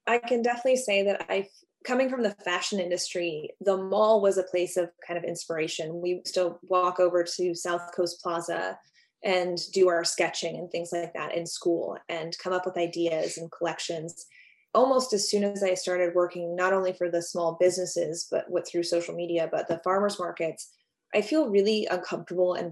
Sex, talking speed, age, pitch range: female, 190 wpm, 20-39, 170-200 Hz